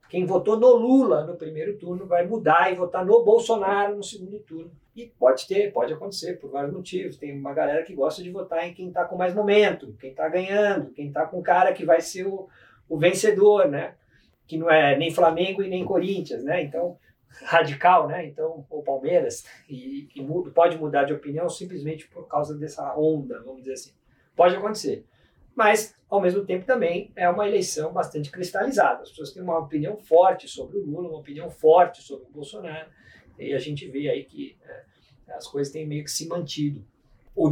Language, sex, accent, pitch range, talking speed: Portuguese, male, Brazilian, 150-205 Hz, 195 wpm